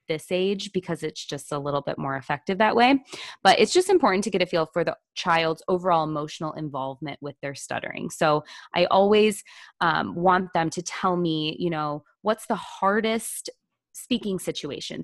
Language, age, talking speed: English, 20-39, 180 wpm